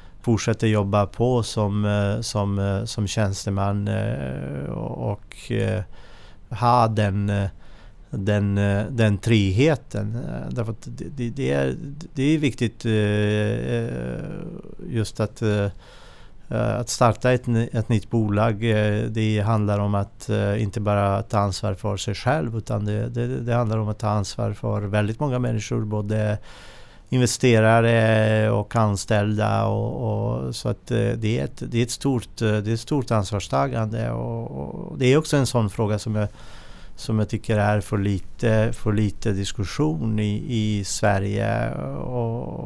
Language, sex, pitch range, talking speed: Swedish, male, 105-120 Hz, 110 wpm